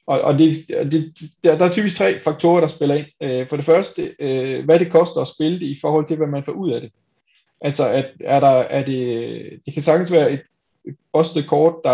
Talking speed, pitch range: 215 wpm, 135-165 Hz